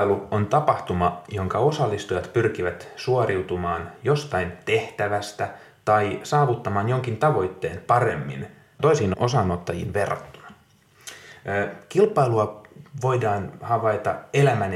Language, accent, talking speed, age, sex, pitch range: Finnish, native, 85 wpm, 30-49, male, 100-130 Hz